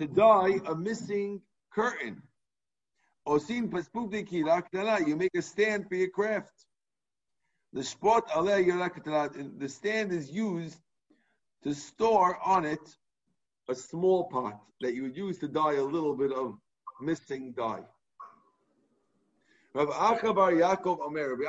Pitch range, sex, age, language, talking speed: 165-215 Hz, male, 50-69, English, 100 wpm